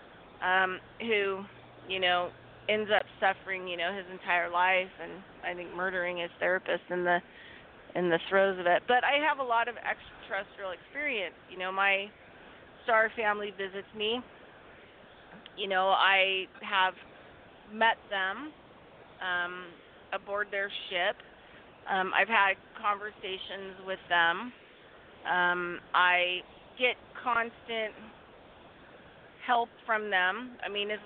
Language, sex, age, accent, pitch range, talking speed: English, female, 30-49, American, 185-215 Hz, 125 wpm